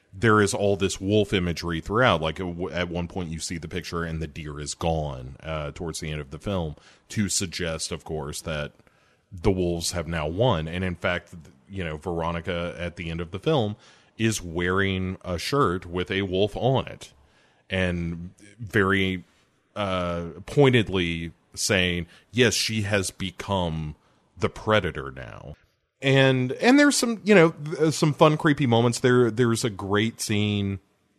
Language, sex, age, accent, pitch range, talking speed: English, male, 30-49, American, 85-105 Hz, 165 wpm